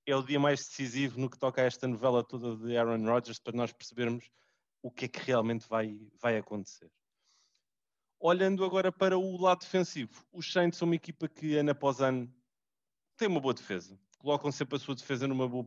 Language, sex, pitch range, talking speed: English, male, 120-150 Hz, 200 wpm